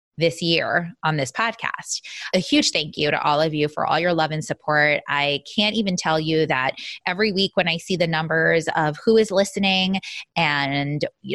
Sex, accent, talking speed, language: female, American, 200 wpm, English